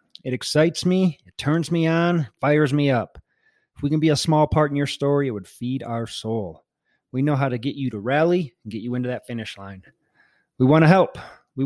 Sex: male